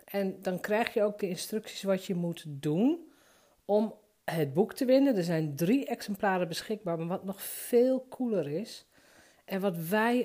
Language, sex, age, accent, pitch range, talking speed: Dutch, female, 50-69, Dutch, 175-235 Hz, 175 wpm